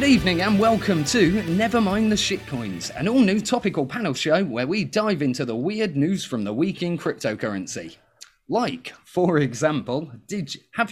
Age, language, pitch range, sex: 30-49, English, 140-205 Hz, male